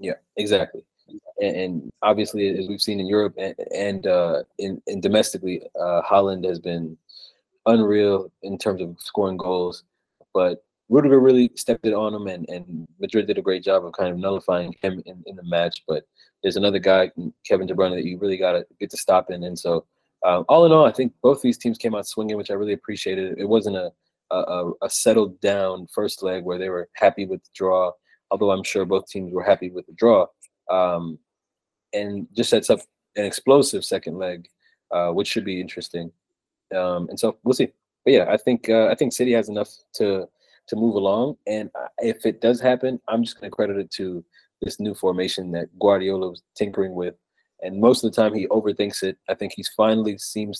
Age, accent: 20-39, American